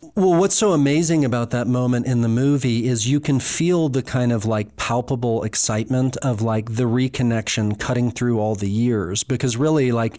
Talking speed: 190 wpm